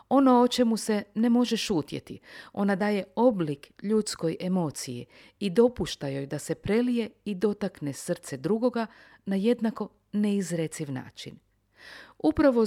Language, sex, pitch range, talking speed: Croatian, female, 160-225 Hz, 130 wpm